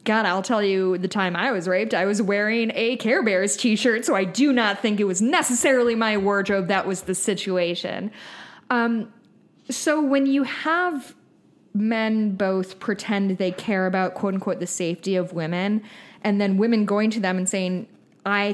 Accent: American